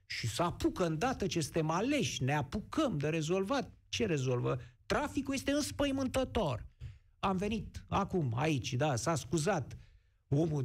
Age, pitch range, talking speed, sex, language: 50-69, 125-210 Hz, 130 wpm, male, Romanian